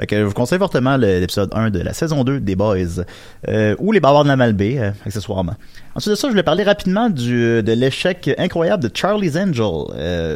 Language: French